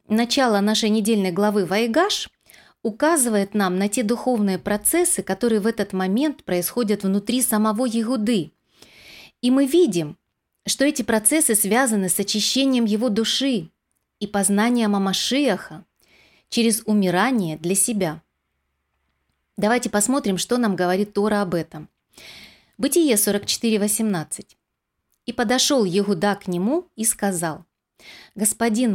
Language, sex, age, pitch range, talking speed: Russian, female, 30-49, 185-245 Hz, 115 wpm